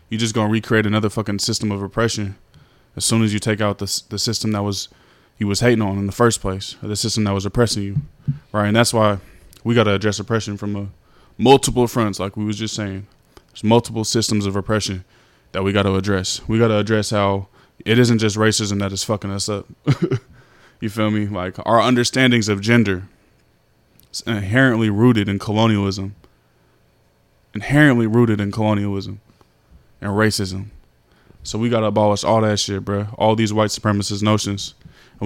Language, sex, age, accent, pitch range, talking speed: English, male, 20-39, American, 100-115 Hz, 190 wpm